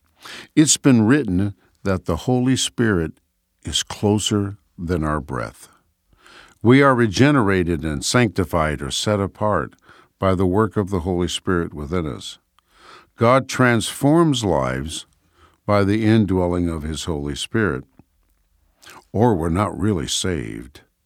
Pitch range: 85-110 Hz